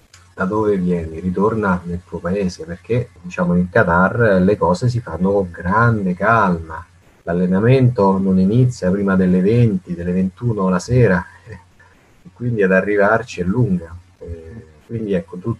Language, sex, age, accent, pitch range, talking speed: Italian, male, 30-49, native, 90-100 Hz, 140 wpm